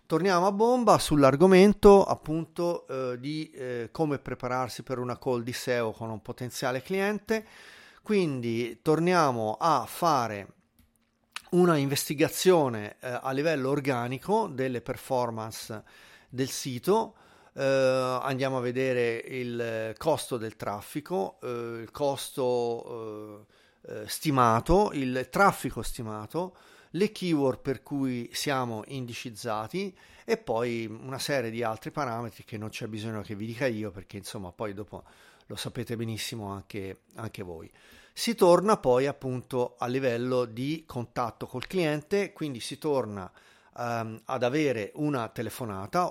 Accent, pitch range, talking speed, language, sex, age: native, 115-155 Hz, 125 wpm, Italian, male, 40-59